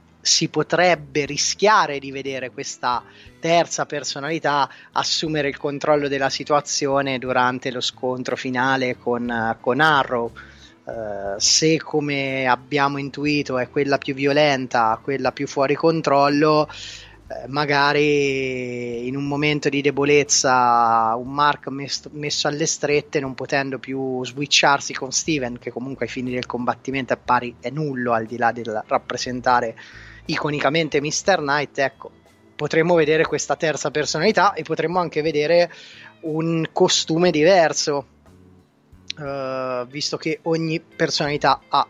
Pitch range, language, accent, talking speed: 125-155 Hz, Italian, native, 125 wpm